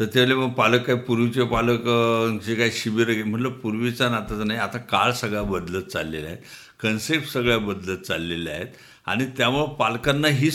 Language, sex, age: Marathi, male, 60-79